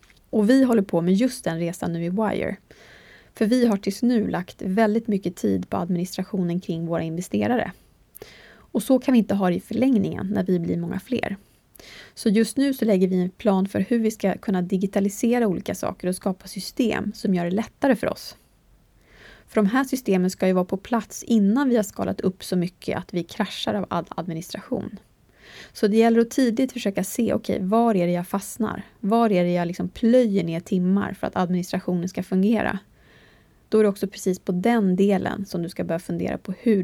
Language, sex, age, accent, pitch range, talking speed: English, female, 20-39, Swedish, 185-230 Hz, 205 wpm